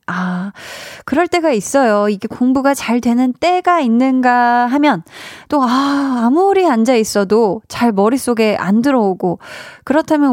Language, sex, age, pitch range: Korean, female, 20-39, 195-275 Hz